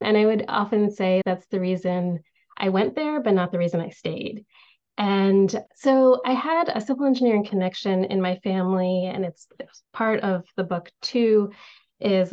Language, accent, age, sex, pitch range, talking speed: English, American, 30-49, female, 180-215 Hz, 175 wpm